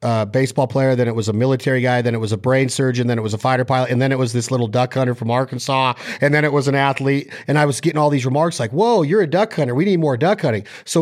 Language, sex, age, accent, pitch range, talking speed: English, male, 40-59, American, 125-155 Hz, 300 wpm